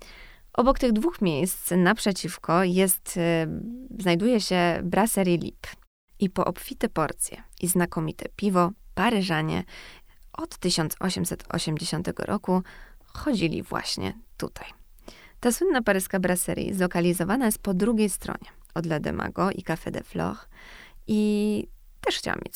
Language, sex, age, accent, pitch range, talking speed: Polish, female, 20-39, native, 170-210 Hz, 115 wpm